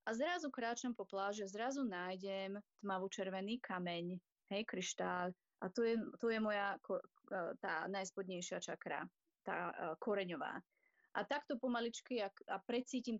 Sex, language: female, Slovak